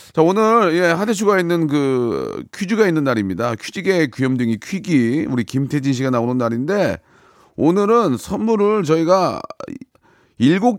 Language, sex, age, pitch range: Korean, male, 40-59, 130-185 Hz